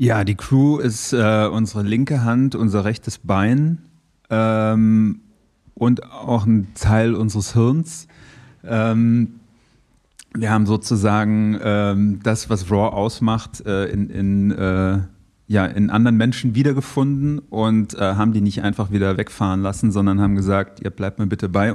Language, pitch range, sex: German, 100-115 Hz, male